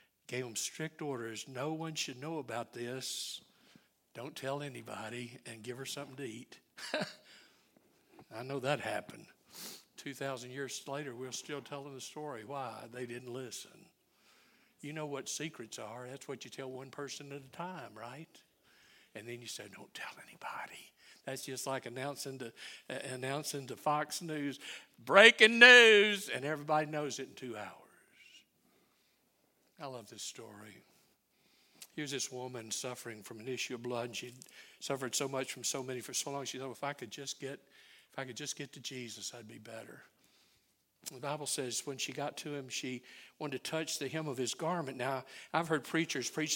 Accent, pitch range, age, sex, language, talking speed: American, 130-155 Hz, 60-79, male, English, 180 wpm